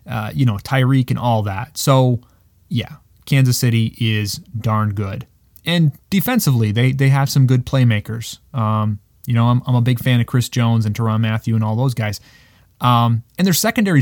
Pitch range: 110-140 Hz